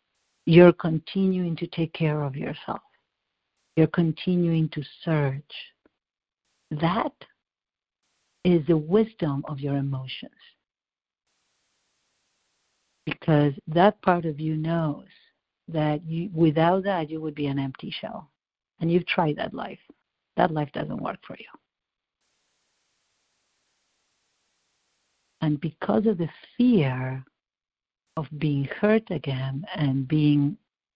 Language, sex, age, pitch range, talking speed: English, female, 60-79, 150-175 Hz, 105 wpm